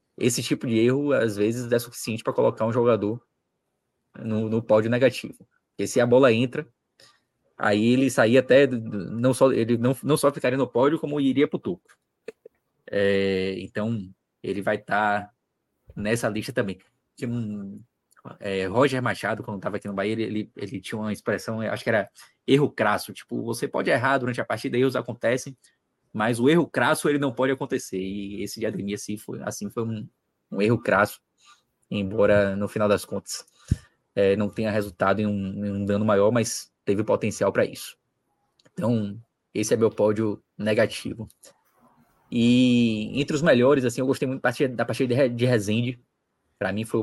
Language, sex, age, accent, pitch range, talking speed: Portuguese, male, 20-39, Brazilian, 105-130 Hz, 165 wpm